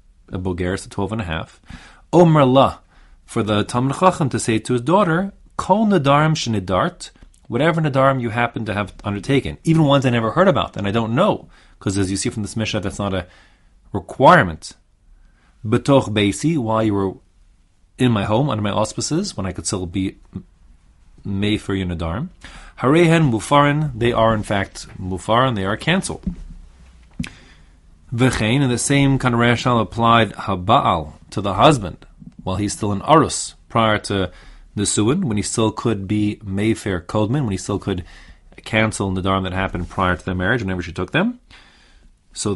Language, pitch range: English, 95-130 Hz